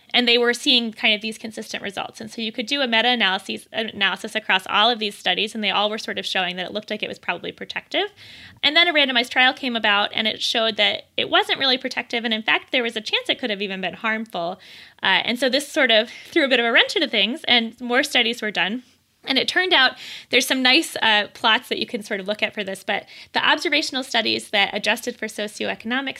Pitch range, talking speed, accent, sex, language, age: 205-250 Hz, 250 wpm, American, female, English, 20-39